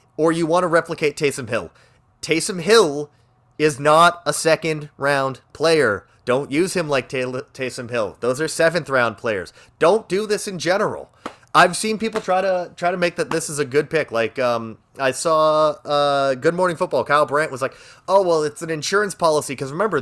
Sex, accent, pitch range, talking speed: male, American, 140-195 Hz, 195 wpm